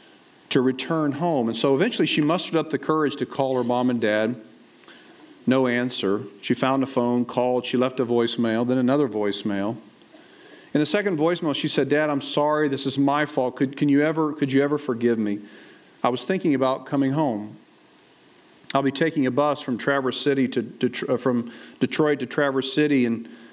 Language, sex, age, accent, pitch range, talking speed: English, male, 40-59, American, 125-160 Hz, 195 wpm